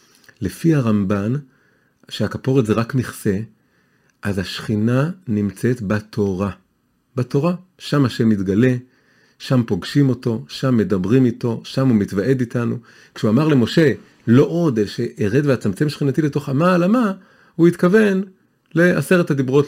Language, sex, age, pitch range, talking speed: Hebrew, male, 40-59, 110-165 Hz, 130 wpm